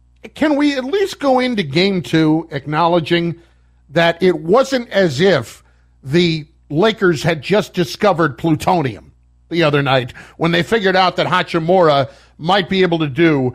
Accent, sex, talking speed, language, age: American, male, 150 wpm, English, 50-69